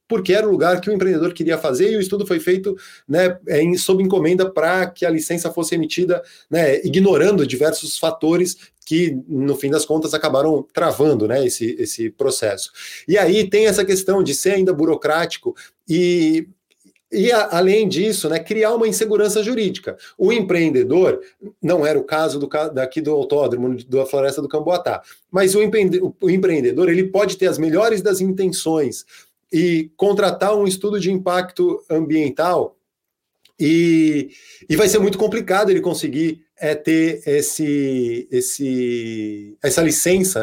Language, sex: Portuguese, male